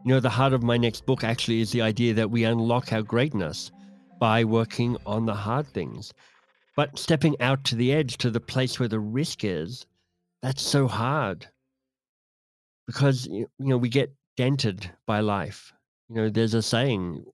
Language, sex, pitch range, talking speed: English, male, 110-125 Hz, 180 wpm